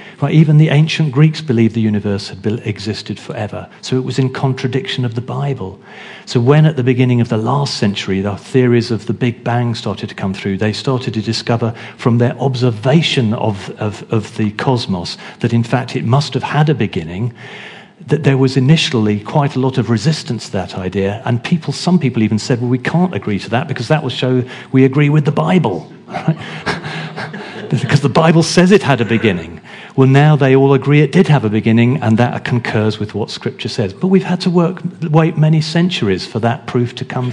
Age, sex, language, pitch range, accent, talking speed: 40-59, male, English, 115-145 Hz, British, 210 wpm